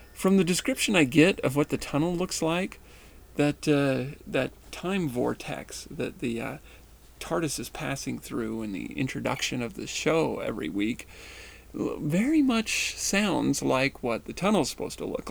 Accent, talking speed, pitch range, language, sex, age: American, 160 wpm, 120-175 Hz, English, male, 40-59